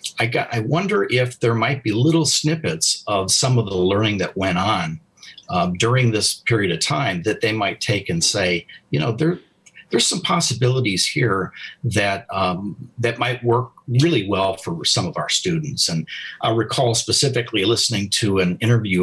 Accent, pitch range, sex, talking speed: American, 110-155 Hz, male, 180 wpm